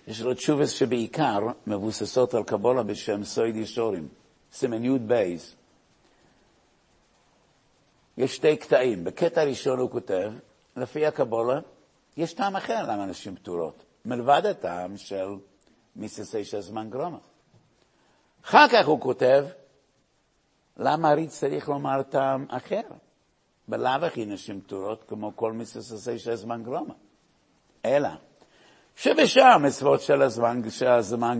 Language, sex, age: Hebrew, male, 60-79